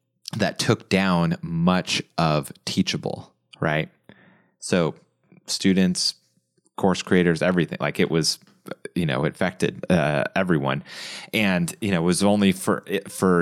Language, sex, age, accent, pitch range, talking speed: English, male, 30-49, American, 80-100 Hz, 130 wpm